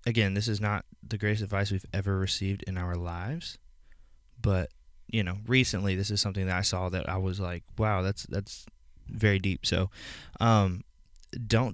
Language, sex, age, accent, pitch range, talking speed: English, male, 20-39, American, 90-110 Hz, 180 wpm